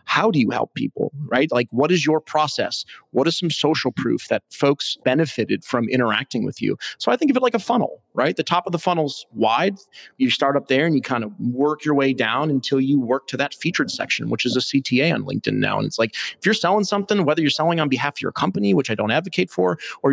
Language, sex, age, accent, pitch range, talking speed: English, male, 30-49, American, 120-150 Hz, 255 wpm